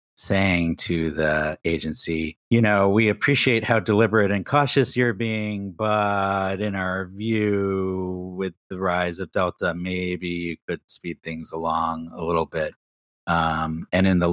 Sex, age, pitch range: male, 30-49, 80-95 Hz